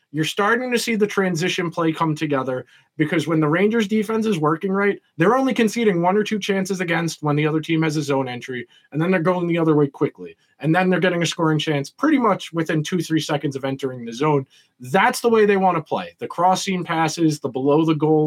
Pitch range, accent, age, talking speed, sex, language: 145-195 Hz, American, 20-39, 235 wpm, male, English